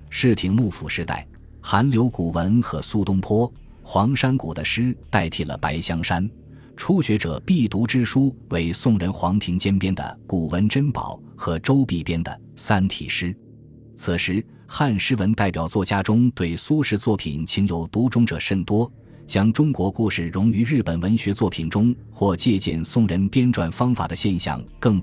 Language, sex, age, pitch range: Chinese, male, 20-39, 85-115 Hz